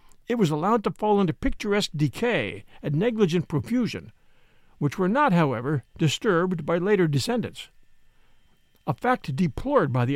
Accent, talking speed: American, 140 wpm